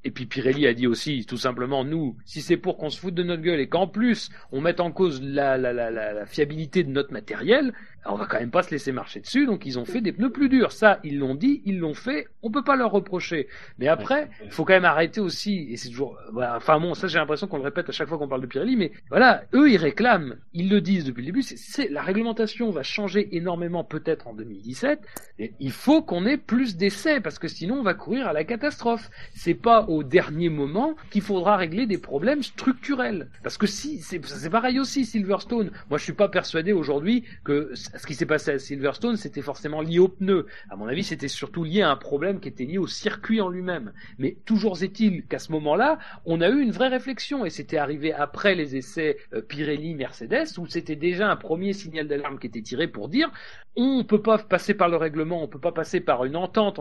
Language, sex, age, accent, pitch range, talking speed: French, male, 40-59, French, 145-215 Hz, 245 wpm